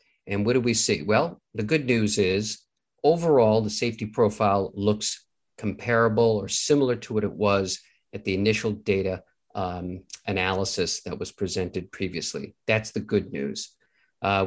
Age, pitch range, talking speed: 50-69, 100-115 Hz, 155 wpm